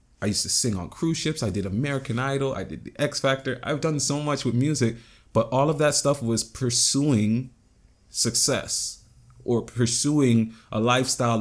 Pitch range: 100-120 Hz